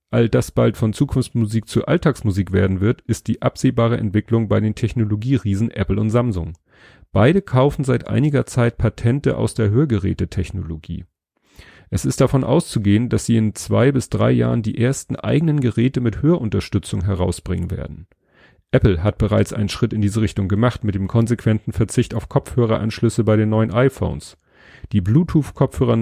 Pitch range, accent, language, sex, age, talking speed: 100-120 Hz, German, German, male, 40-59, 155 wpm